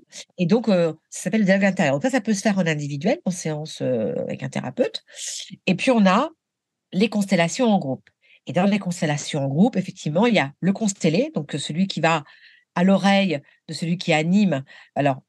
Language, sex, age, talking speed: French, female, 50-69, 215 wpm